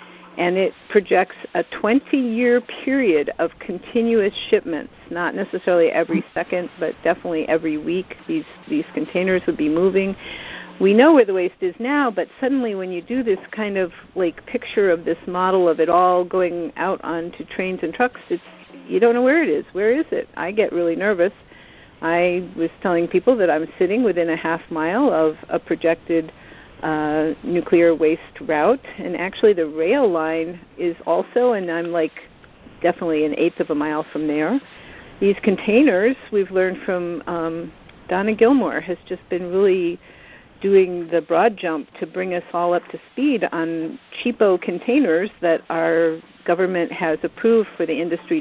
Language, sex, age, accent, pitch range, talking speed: English, female, 50-69, American, 165-205 Hz, 170 wpm